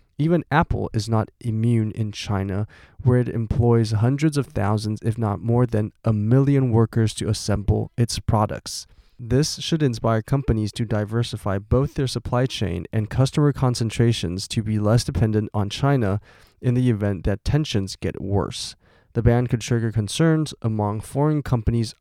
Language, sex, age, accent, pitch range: Chinese, male, 20-39, American, 105-125 Hz